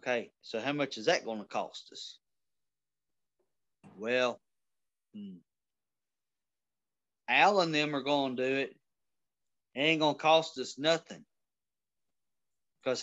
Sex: male